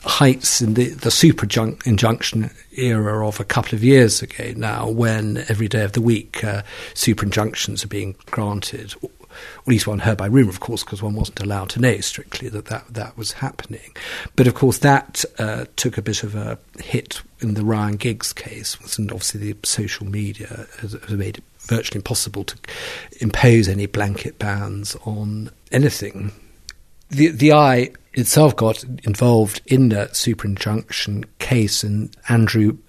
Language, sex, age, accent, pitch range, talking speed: English, male, 50-69, British, 105-120 Hz, 170 wpm